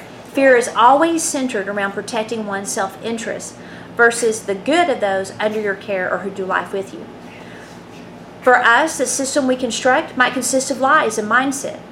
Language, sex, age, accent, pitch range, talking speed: English, female, 40-59, American, 200-255 Hz, 170 wpm